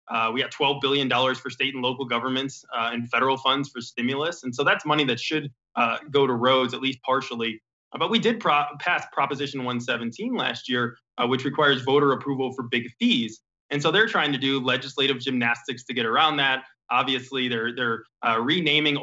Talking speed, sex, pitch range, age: 200 wpm, male, 120-140 Hz, 20-39